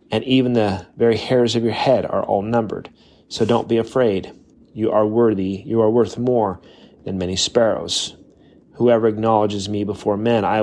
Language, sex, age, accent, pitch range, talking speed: English, male, 30-49, American, 95-110 Hz, 175 wpm